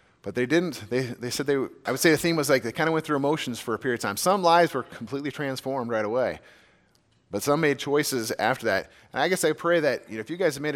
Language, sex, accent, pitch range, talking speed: English, male, American, 130-160 Hz, 290 wpm